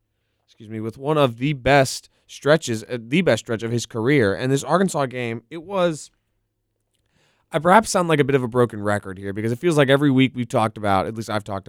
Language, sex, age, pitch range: English, male, 20-39, 110-140 Hz